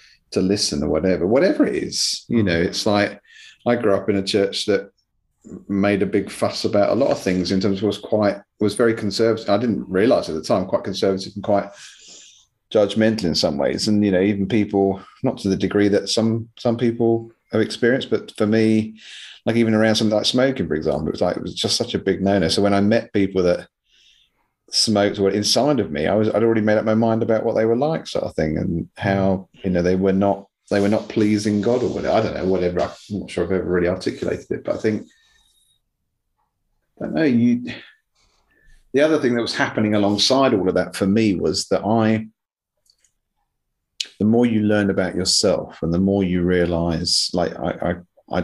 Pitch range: 95-110 Hz